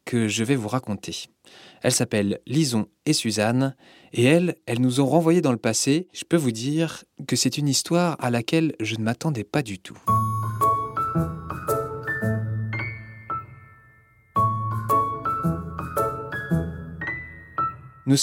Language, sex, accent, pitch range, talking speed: French, male, French, 110-145 Hz, 120 wpm